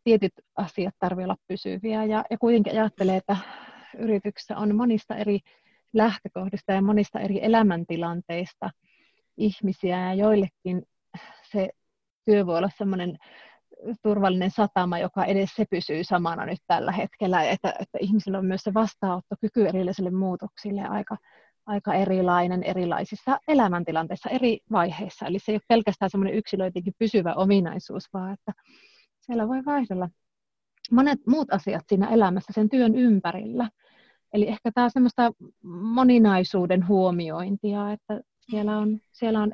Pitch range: 185-215 Hz